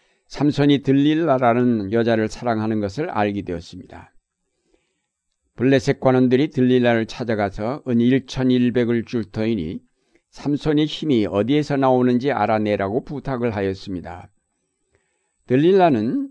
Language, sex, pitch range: Korean, male, 110-135 Hz